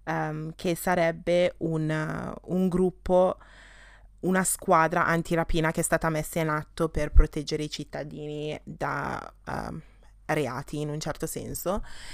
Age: 20-39